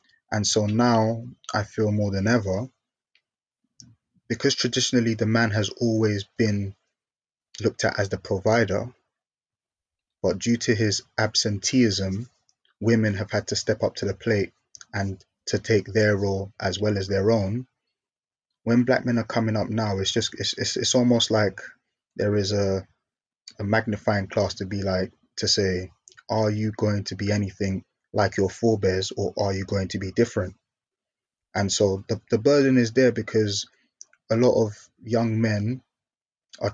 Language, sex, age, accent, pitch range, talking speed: English, male, 20-39, British, 100-115 Hz, 160 wpm